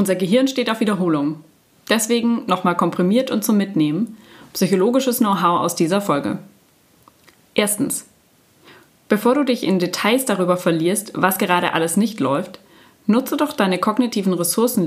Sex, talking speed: female, 135 wpm